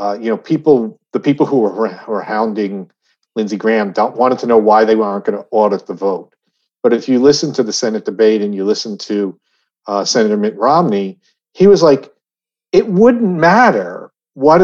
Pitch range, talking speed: 110-175 Hz, 195 wpm